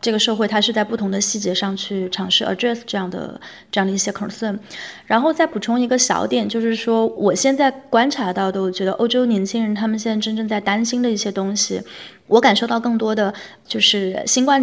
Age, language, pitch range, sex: 20-39, Chinese, 195-230 Hz, female